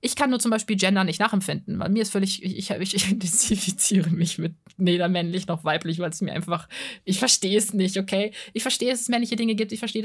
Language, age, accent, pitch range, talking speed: German, 20-39, German, 190-230 Hz, 225 wpm